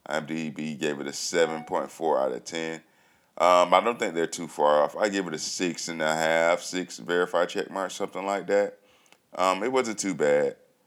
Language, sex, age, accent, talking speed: English, male, 20-39, American, 225 wpm